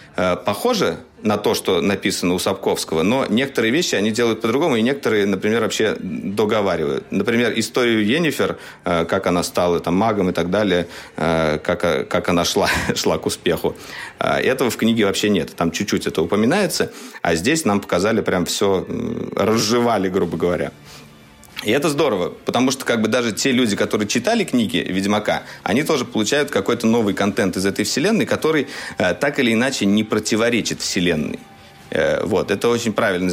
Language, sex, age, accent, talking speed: Russian, male, 40-59, native, 160 wpm